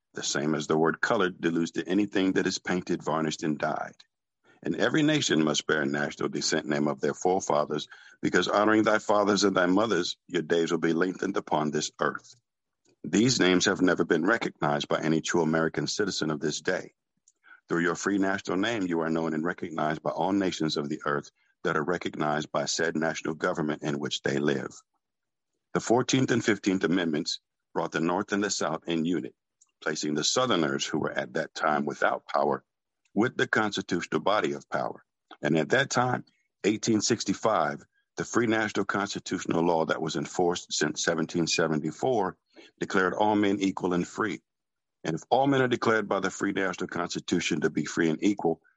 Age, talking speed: 50-69, 185 wpm